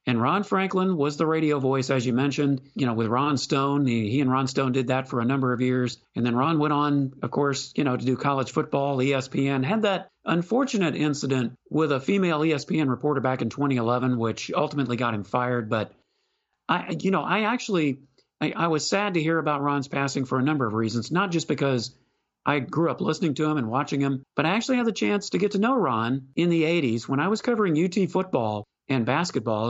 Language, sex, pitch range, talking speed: English, male, 130-175 Hz, 225 wpm